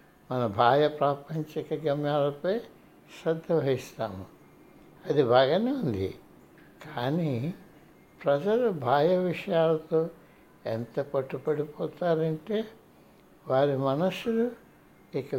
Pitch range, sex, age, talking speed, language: 130-175 Hz, male, 60-79, 70 wpm, Telugu